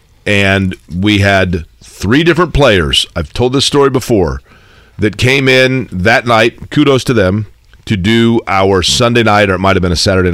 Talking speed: 180 wpm